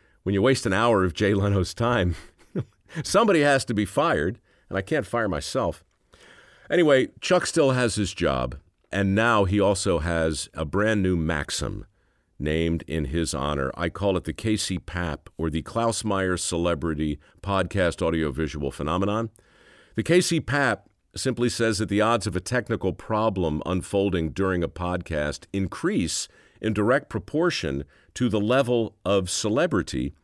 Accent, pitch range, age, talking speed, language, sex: American, 80-110 Hz, 50-69, 155 wpm, English, male